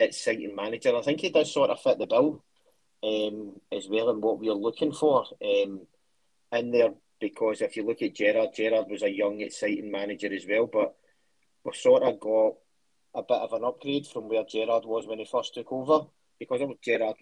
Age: 30-49